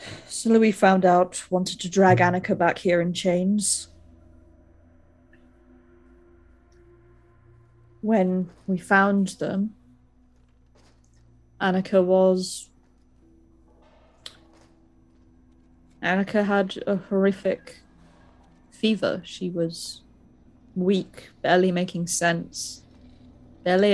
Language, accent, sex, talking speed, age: English, British, female, 75 wpm, 30-49